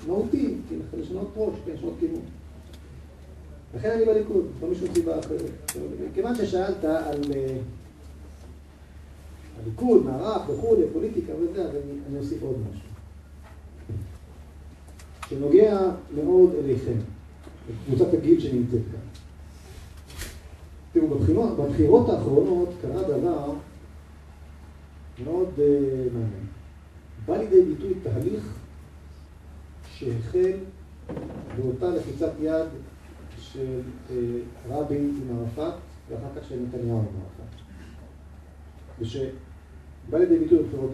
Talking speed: 95 wpm